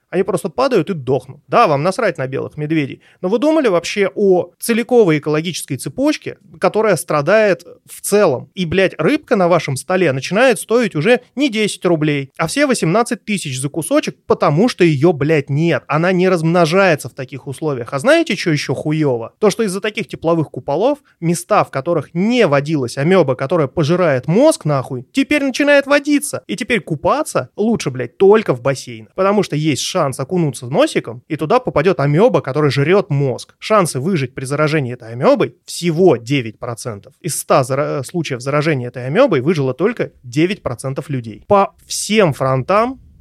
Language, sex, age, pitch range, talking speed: Russian, male, 30-49, 140-200 Hz, 170 wpm